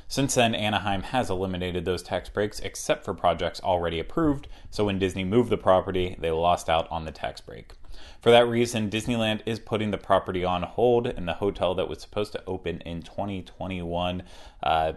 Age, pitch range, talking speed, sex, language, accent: 30-49, 85-105 Hz, 185 wpm, male, English, American